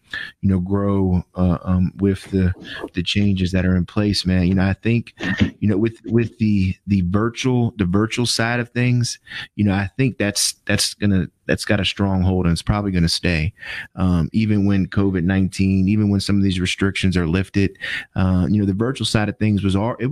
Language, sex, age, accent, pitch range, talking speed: English, male, 30-49, American, 90-105 Hz, 210 wpm